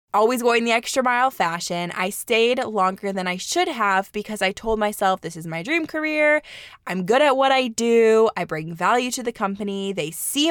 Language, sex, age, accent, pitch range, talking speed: English, female, 20-39, American, 185-245 Hz, 205 wpm